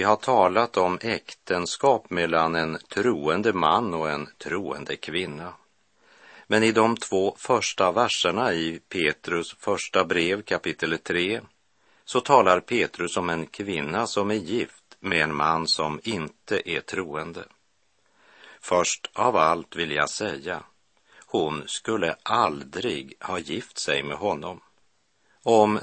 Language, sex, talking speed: Swedish, male, 130 wpm